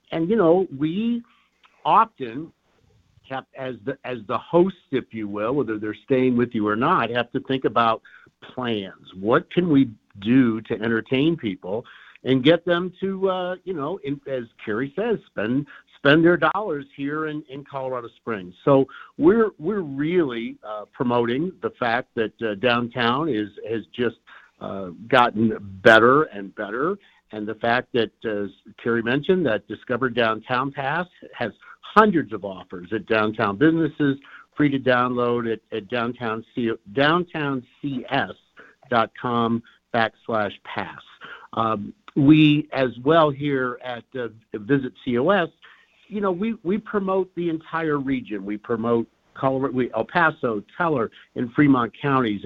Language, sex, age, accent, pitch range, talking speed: English, male, 50-69, American, 115-155 Hz, 145 wpm